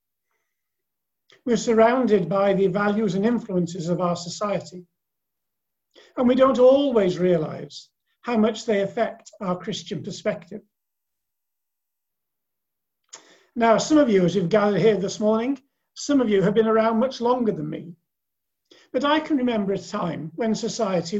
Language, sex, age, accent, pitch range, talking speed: English, male, 50-69, British, 185-230 Hz, 140 wpm